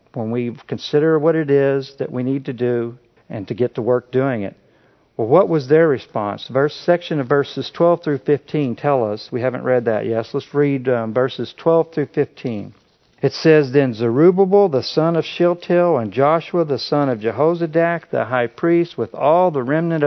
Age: 50-69